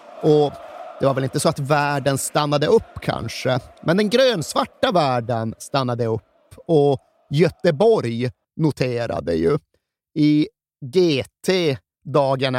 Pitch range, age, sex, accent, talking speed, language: 120-155 Hz, 30-49, male, native, 110 wpm, Swedish